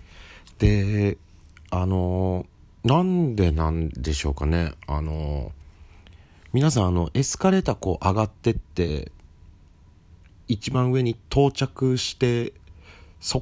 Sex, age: male, 40-59